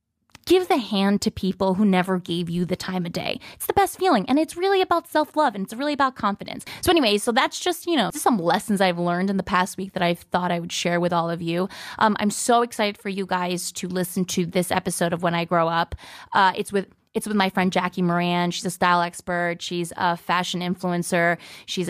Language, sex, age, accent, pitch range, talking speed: English, female, 20-39, American, 180-220 Hz, 240 wpm